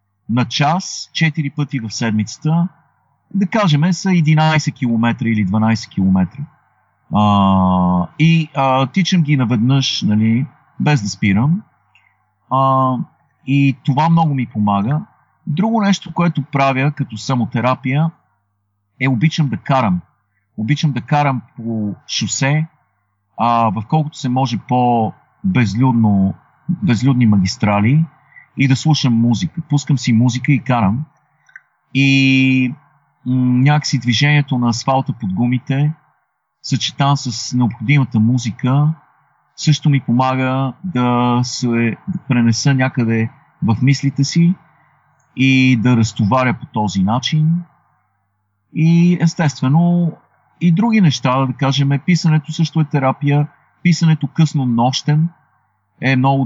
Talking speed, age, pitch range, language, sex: 115 wpm, 50-69, 115-155 Hz, Bulgarian, male